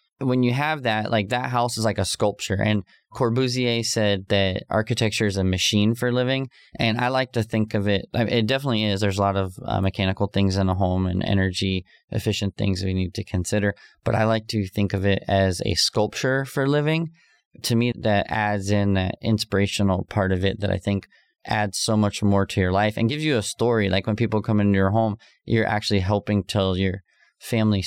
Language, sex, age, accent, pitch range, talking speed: English, male, 20-39, American, 100-115 Hz, 210 wpm